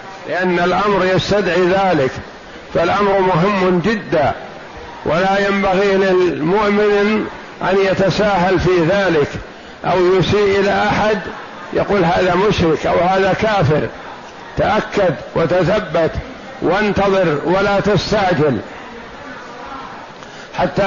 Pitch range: 175-195 Hz